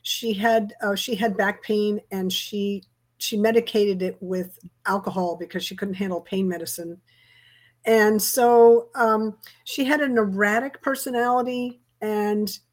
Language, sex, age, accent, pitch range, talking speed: English, female, 50-69, American, 180-220 Hz, 135 wpm